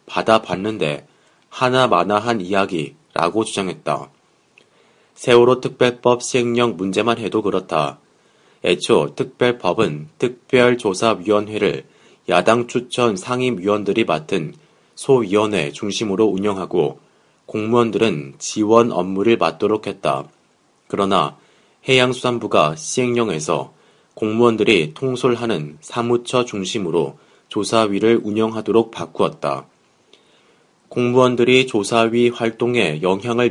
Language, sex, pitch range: Korean, male, 100-120 Hz